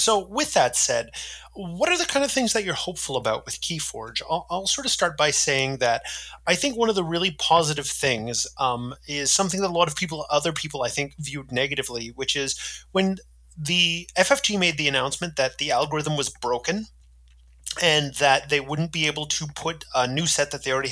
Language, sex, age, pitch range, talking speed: English, male, 30-49, 135-160 Hz, 210 wpm